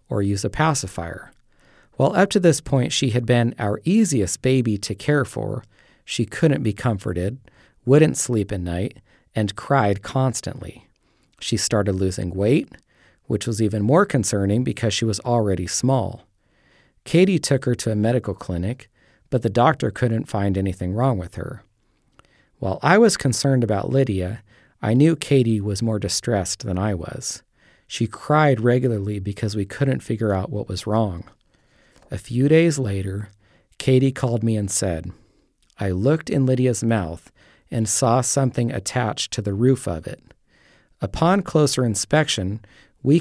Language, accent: English, American